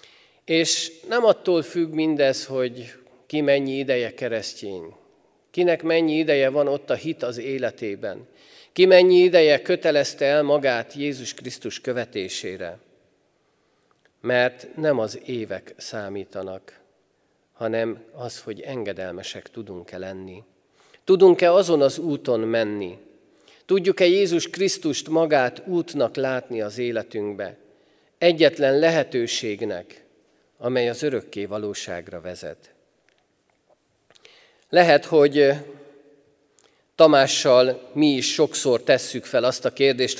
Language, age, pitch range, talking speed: Hungarian, 50-69, 120-160 Hz, 105 wpm